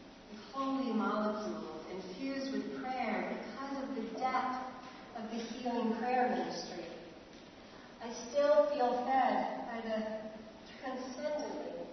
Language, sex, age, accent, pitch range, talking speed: English, female, 40-59, American, 200-255 Hz, 105 wpm